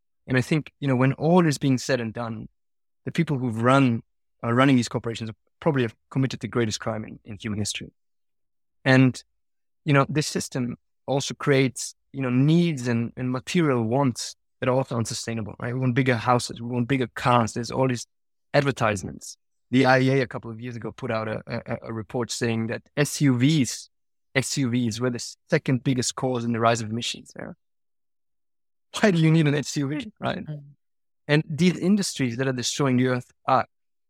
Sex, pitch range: male, 115-140 Hz